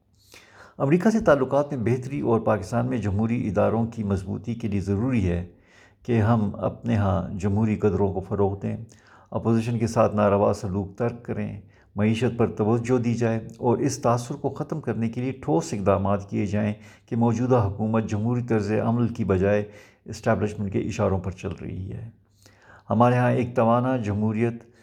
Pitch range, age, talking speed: 100-115 Hz, 50-69, 165 wpm